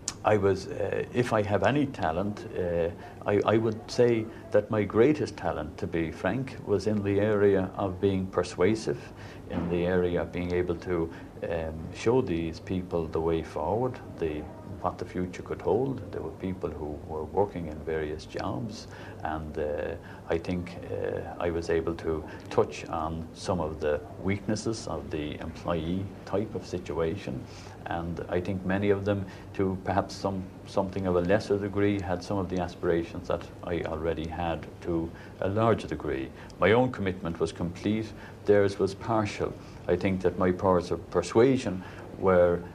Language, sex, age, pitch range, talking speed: English, male, 60-79, 85-105 Hz, 170 wpm